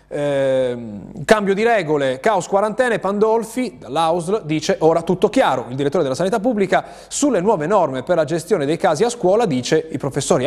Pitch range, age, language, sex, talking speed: 125-175 Hz, 30-49, Italian, male, 170 wpm